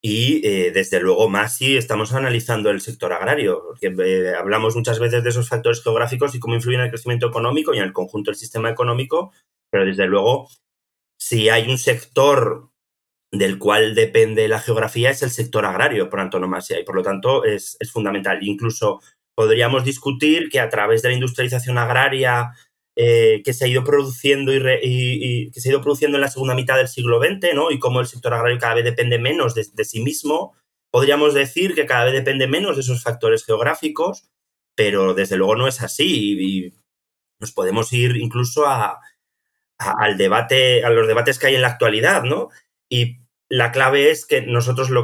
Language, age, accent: English, 30-49, Spanish